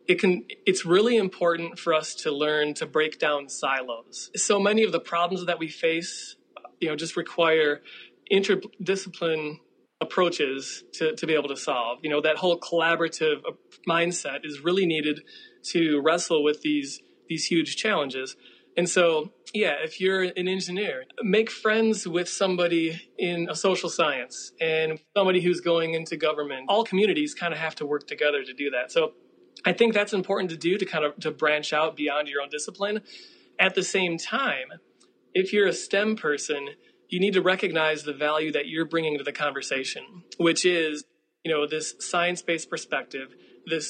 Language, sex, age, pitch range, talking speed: English, male, 30-49, 155-190 Hz, 175 wpm